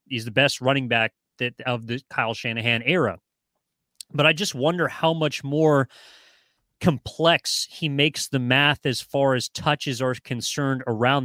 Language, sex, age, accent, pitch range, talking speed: English, male, 30-49, American, 125-150 Hz, 160 wpm